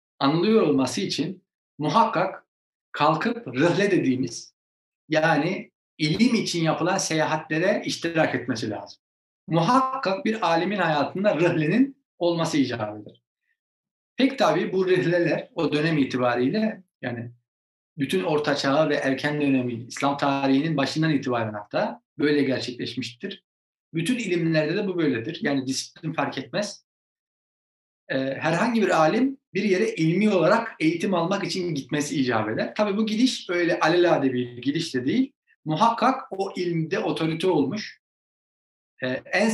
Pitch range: 140-195 Hz